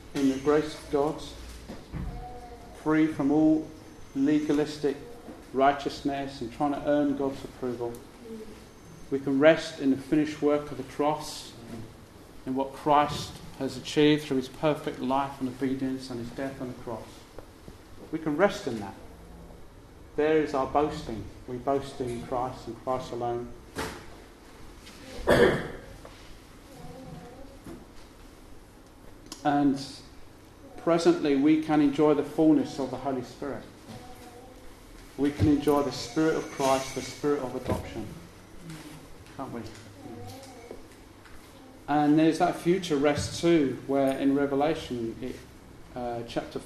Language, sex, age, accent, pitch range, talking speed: English, male, 40-59, British, 125-150 Hz, 120 wpm